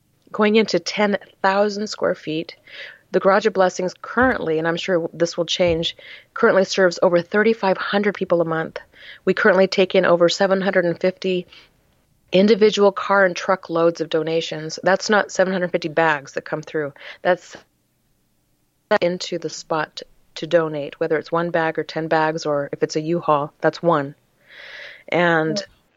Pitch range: 165-190 Hz